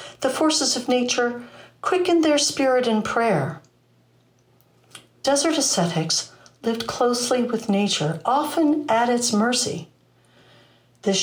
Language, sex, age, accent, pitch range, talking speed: English, female, 60-79, American, 170-250 Hz, 105 wpm